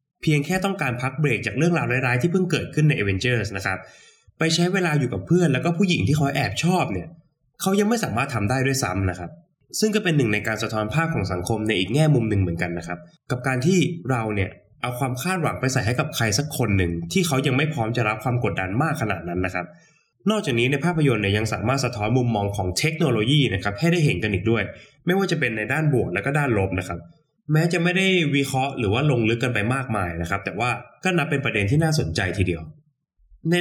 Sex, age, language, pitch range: male, 20-39, Thai, 105-155 Hz